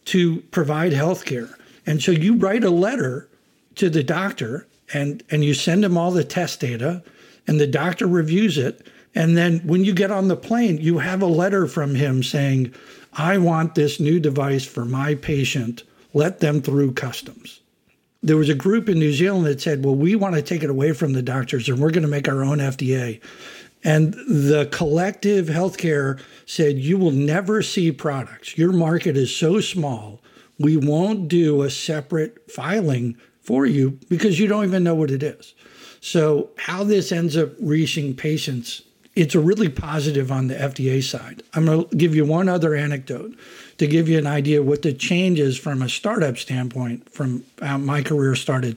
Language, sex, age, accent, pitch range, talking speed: English, male, 60-79, American, 140-180 Hz, 185 wpm